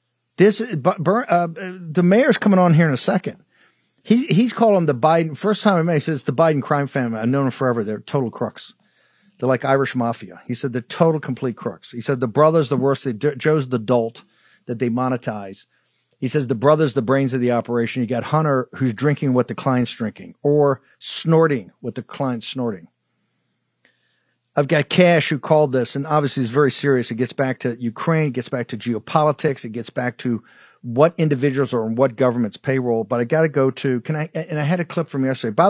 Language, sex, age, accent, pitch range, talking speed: English, male, 50-69, American, 125-160 Hz, 220 wpm